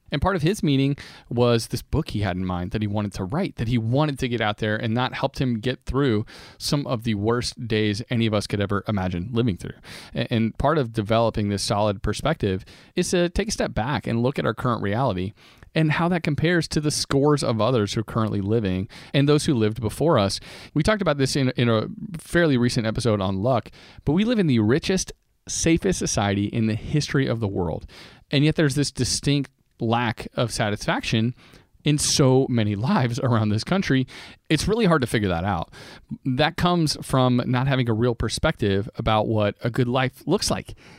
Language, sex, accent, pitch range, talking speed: English, male, American, 105-145 Hz, 210 wpm